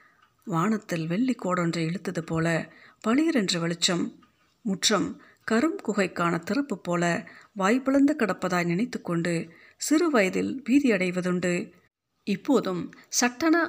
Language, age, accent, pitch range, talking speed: Tamil, 50-69, native, 165-225 Hz, 90 wpm